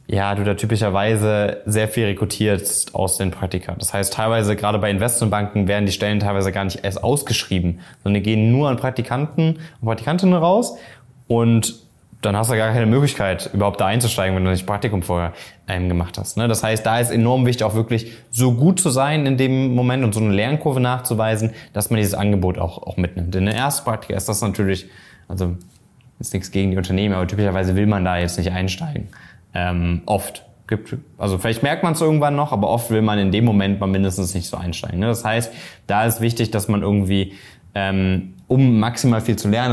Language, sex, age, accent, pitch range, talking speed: German, male, 20-39, German, 95-115 Hz, 205 wpm